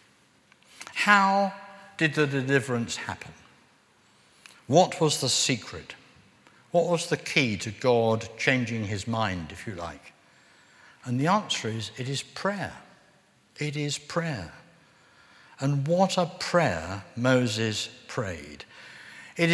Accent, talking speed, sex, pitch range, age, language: British, 115 wpm, male, 110-155 Hz, 60-79, English